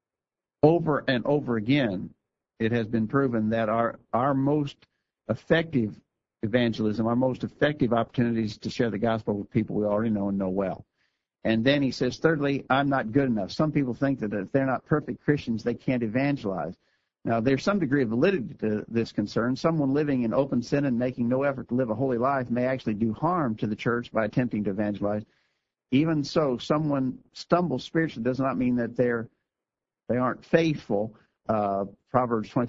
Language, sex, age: English, male, 50-69